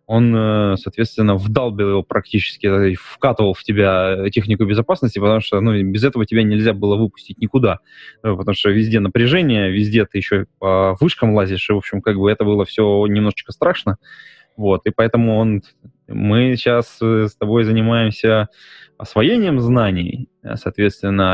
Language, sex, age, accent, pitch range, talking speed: Russian, male, 20-39, native, 100-115 Hz, 145 wpm